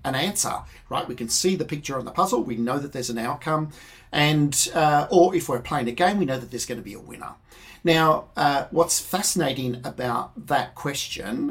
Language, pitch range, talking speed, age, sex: English, 125-165 Hz, 210 wpm, 50-69, male